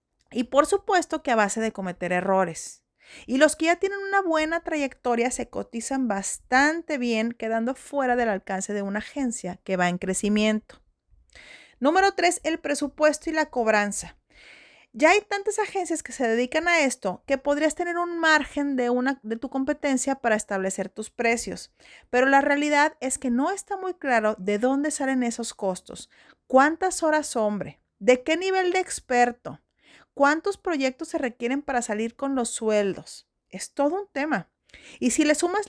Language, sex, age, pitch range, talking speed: Spanish, female, 40-59, 220-305 Hz, 170 wpm